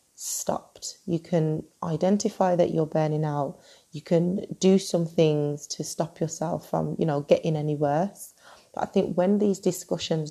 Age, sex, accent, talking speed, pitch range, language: 30-49, female, British, 165 wpm, 160-175 Hz, English